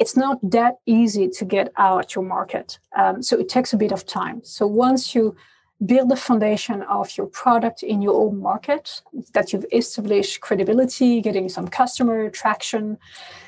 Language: English